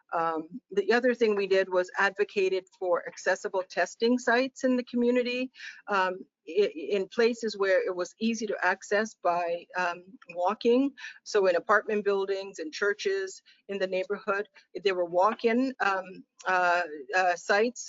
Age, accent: 50-69, American